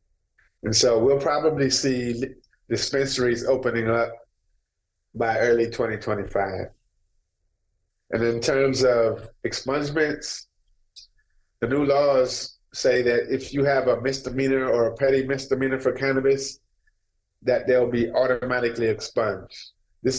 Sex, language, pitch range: male, English, 115-135 Hz